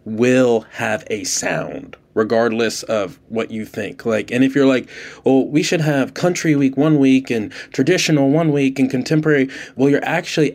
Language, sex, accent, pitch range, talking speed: English, male, American, 115-140 Hz, 175 wpm